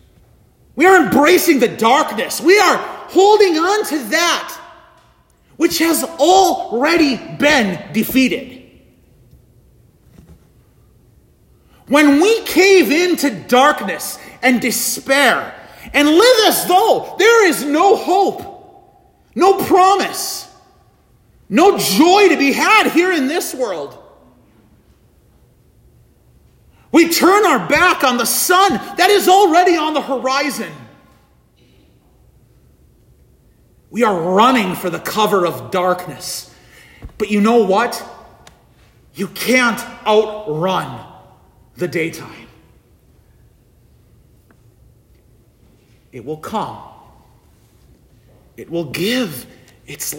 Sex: male